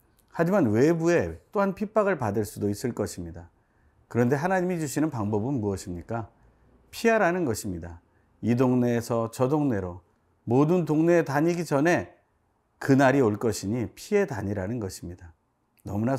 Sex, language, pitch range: male, Korean, 105-140 Hz